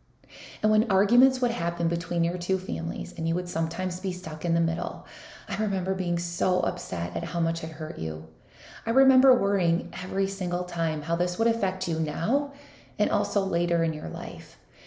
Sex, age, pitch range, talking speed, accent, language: female, 20-39, 165-195 Hz, 190 wpm, American, English